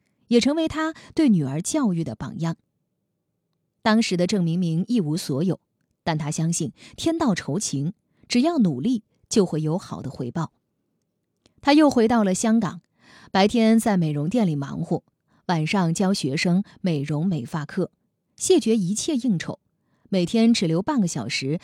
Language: Chinese